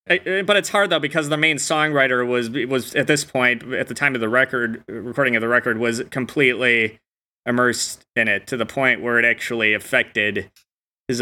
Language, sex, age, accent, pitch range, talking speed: English, male, 20-39, American, 110-130 Hz, 200 wpm